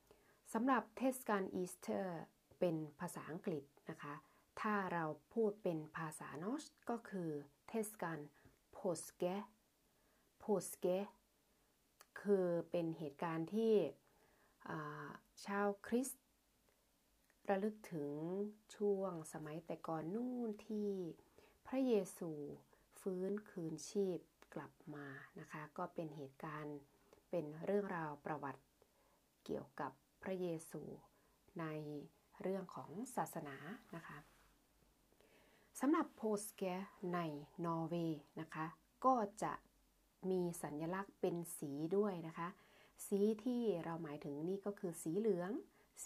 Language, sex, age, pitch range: Thai, female, 20-39, 160-210 Hz